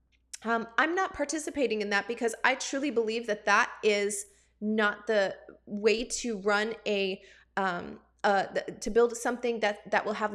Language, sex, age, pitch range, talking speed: English, female, 20-39, 210-255 Hz, 170 wpm